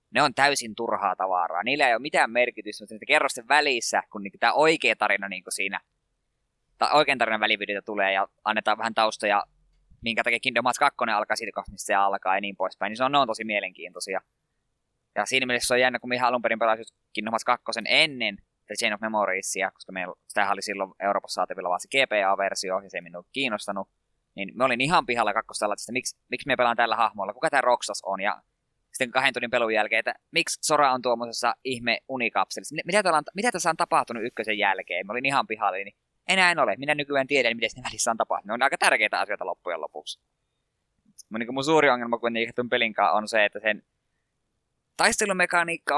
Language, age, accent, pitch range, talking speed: Finnish, 20-39, native, 105-135 Hz, 210 wpm